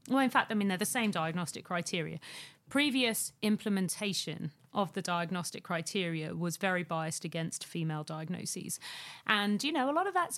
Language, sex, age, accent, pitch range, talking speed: English, female, 40-59, British, 160-210 Hz, 170 wpm